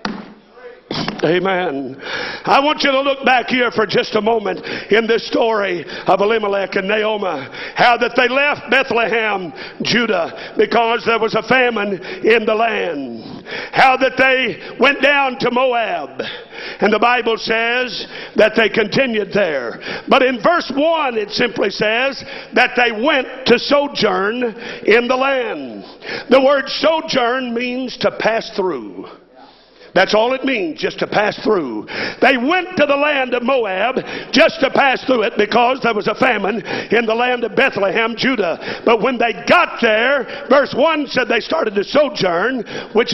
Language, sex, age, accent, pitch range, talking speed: English, male, 50-69, American, 220-270 Hz, 160 wpm